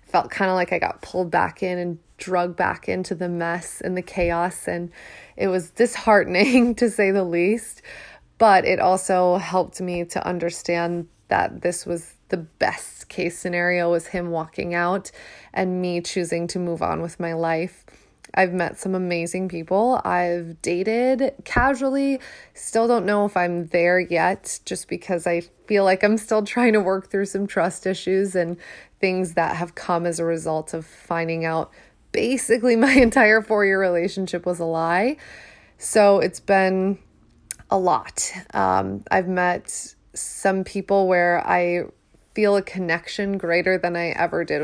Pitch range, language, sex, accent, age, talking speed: 175-205 Hz, English, female, American, 20-39, 165 wpm